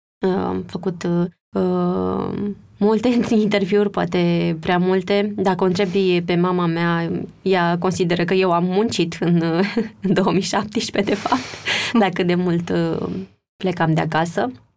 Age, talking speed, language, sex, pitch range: 20-39, 140 wpm, Romanian, female, 165-190 Hz